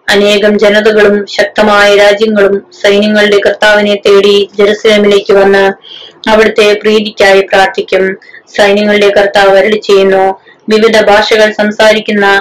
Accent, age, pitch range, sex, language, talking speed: native, 20-39, 200-215 Hz, female, Malayalam, 80 wpm